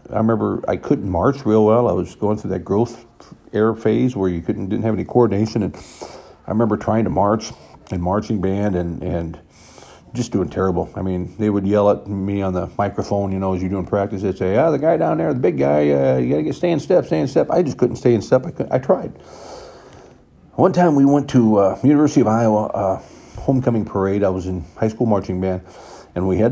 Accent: American